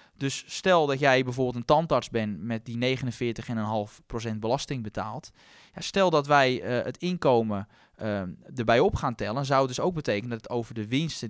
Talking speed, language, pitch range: 180 wpm, Dutch, 115-150 Hz